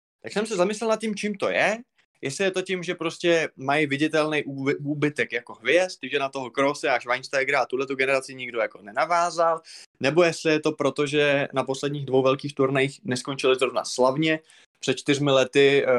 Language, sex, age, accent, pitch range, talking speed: Czech, male, 20-39, native, 130-165 Hz, 190 wpm